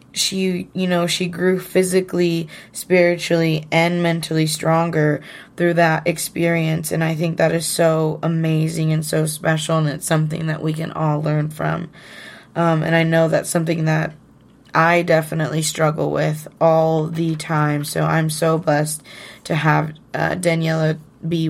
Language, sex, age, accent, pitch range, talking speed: English, female, 20-39, American, 160-180 Hz, 155 wpm